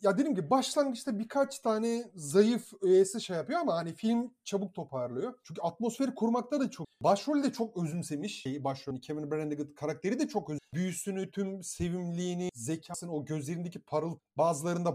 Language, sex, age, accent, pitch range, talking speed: Turkish, male, 30-49, native, 155-220 Hz, 155 wpm